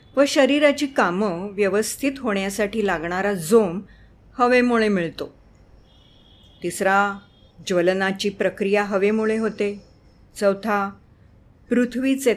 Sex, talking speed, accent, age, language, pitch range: female, 80 wpm, native, 50-69, Marathi, 185-245 Hz